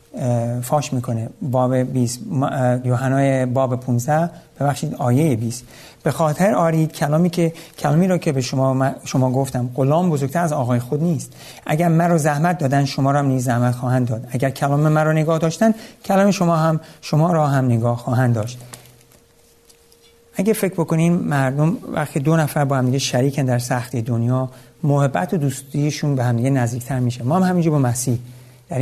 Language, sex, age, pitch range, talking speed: Persian, male, 50-69, 125-150 Hz, 170 wpm